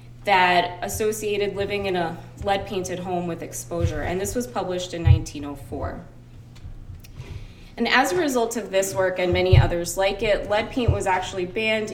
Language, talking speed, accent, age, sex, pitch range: English, 160 wpm, American, 20-39, female, 160-210 Hz